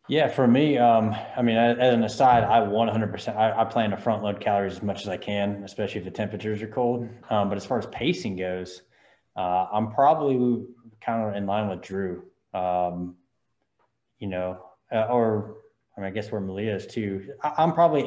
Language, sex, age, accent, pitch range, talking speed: English, male, 20-39, American, 95-110 Hz, 205 wpm